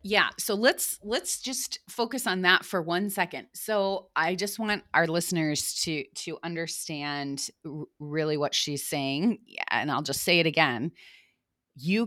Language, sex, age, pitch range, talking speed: English, female, 30-49, 150-205 Hz, 155 wpm